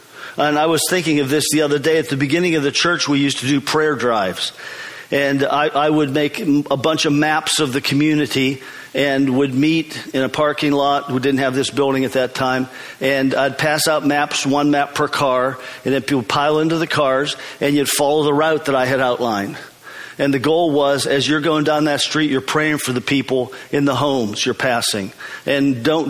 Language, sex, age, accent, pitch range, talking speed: English, male, 50-69, American, 135-155 Hz, 220 wpm